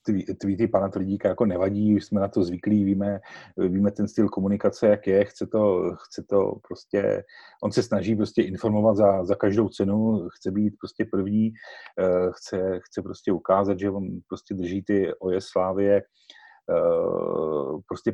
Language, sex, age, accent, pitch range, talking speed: Czech, male, 40-59, native, 95-110 Hz, 165 wpm